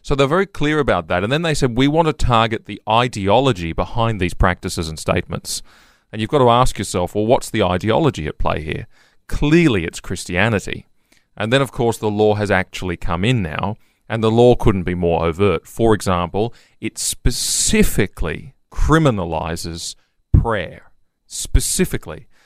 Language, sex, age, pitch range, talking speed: English, male, 30-49, 90-120 Hz, 165 wpm